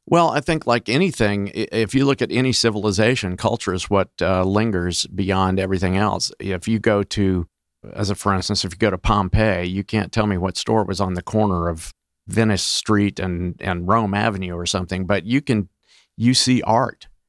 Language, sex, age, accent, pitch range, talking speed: English, male, 50-69, American, 95-110 Hz, 200 wpm